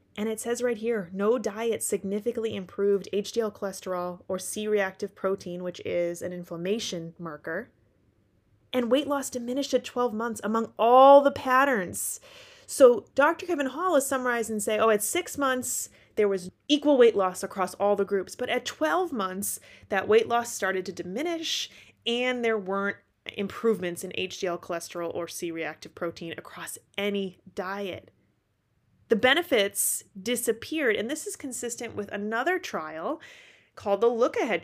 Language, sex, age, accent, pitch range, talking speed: English, female, 30-49, American, 185-250 Hz, 155 wpm